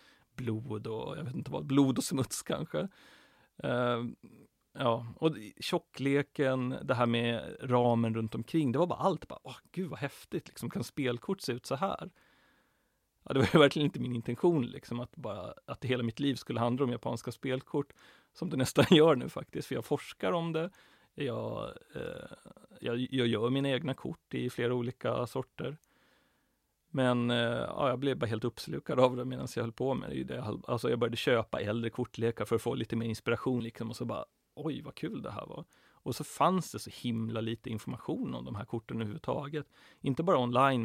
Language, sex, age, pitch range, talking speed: English, male, 30-49, 115-140 Hz, 195 wpm